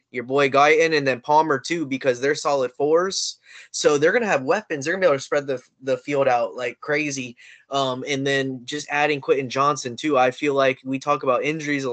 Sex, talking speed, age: male, 230 wpm, 10-29